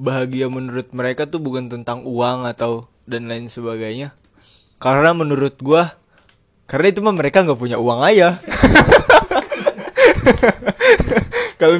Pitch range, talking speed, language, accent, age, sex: 110-155 Hz, 115 wpm, Indonesian, native, 20-39, male